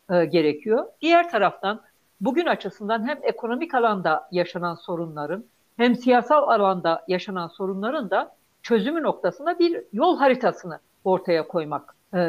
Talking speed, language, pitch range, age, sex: 115 wpm, Turkish, 185-255 Hz, 60-79, female